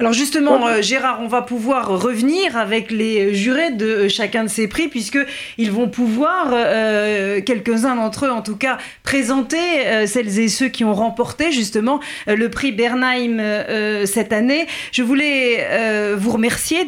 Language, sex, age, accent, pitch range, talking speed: French, female, 40-59, French, 205-250 Hz, 145 wpm